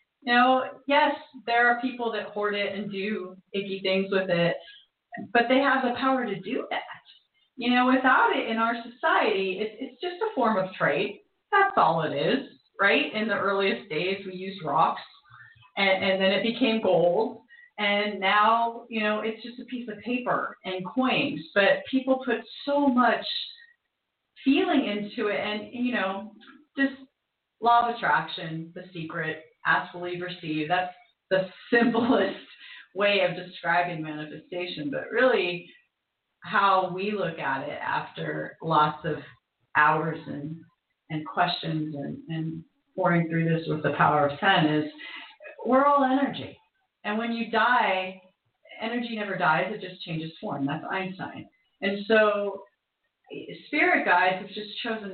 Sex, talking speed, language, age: female, 155 wpm, English, 30-49